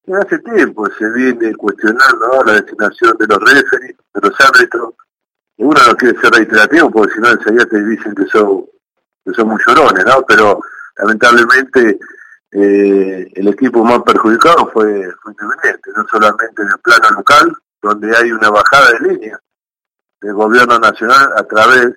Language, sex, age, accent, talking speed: Spanish, male, 50-69, Argentinian, 165 wpm